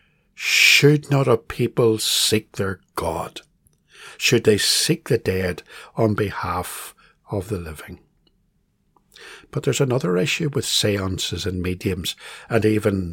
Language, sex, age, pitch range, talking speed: English, male, 60-79, 100-135 Hz, 125 wpm